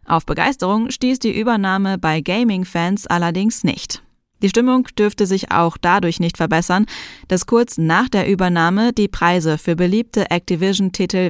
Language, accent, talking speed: German, German, 145 wpm